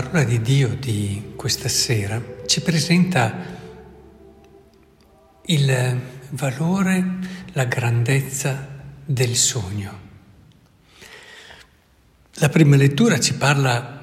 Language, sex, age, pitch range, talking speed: Italian, male, 60-79, 115-145 Hz, 80 wpm